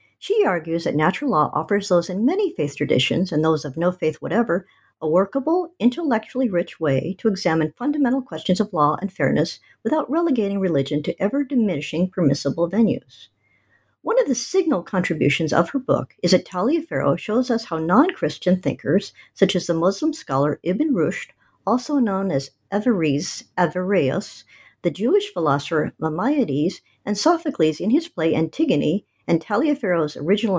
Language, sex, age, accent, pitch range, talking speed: English, male, 60-79, American, 160-255 Hz, 150 wpm